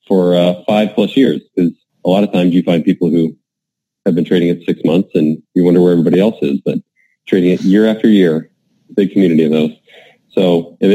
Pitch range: 90-105 Hz